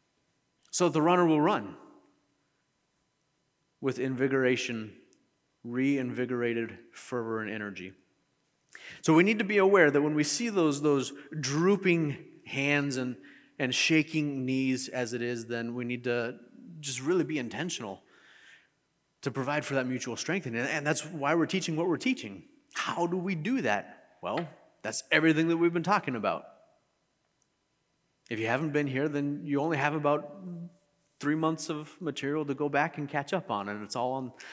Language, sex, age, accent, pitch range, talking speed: English, male, 30-49, American, 125-160 Hz, 160 wpm